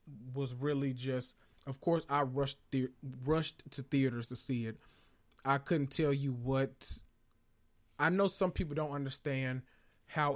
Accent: American